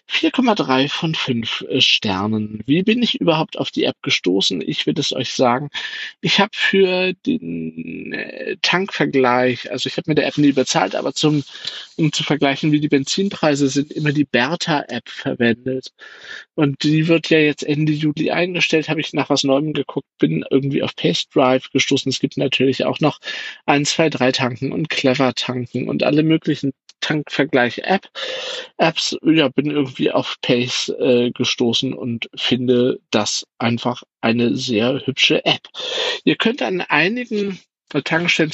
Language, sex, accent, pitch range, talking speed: German, male, German, 125-155 Hz, 155 wpm